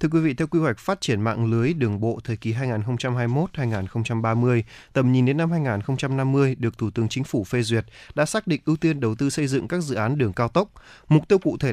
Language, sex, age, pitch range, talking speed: Vietnamese, male, 20-39, 115-155 Hz, 235 wpm